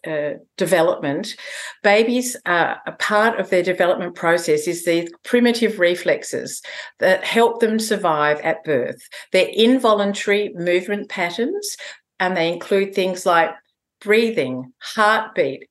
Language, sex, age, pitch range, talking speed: English, female, 50-69, 180-225 Hz, 120 wpm